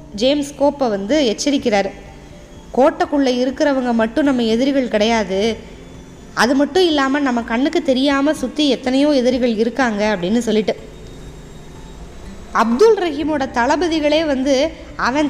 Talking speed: 105 wpm